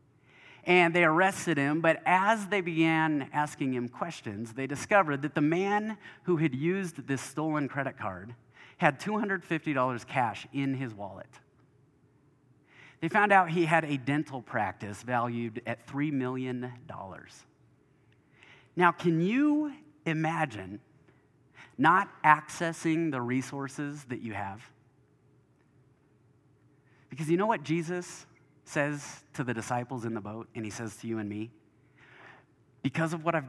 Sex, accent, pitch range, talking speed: male, American, 125-160 Hz, 135 wpm